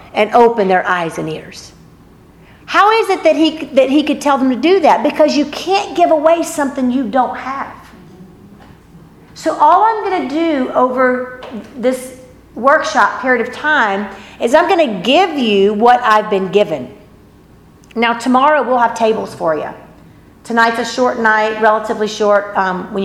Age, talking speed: 50-69, 165 wpm